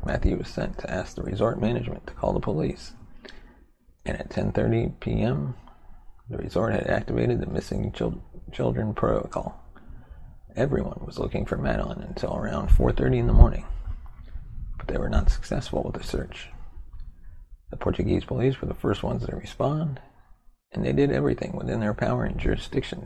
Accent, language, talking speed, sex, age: American, English, 160 wpm, male, 30-49